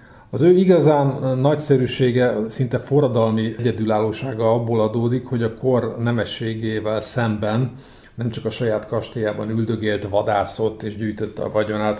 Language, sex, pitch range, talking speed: Hungarian, male, 110-130 Hz, 125 wpm